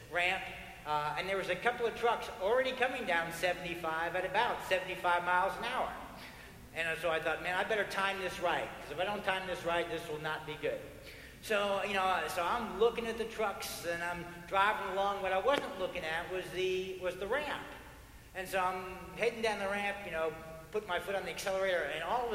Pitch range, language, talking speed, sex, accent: 155-195 Hz, English, 220 wpm, male, American